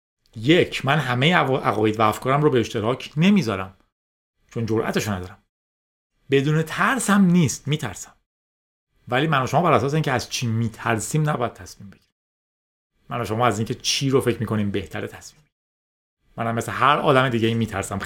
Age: 30-49